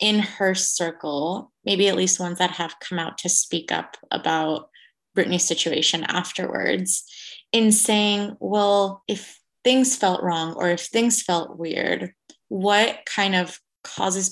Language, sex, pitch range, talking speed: English, female, 180-225 Hz, 145 wpm